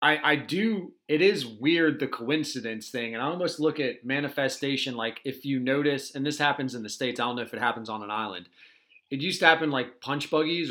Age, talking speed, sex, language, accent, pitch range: 30-49, 230 wpm, male, English, American, 130-160 Hz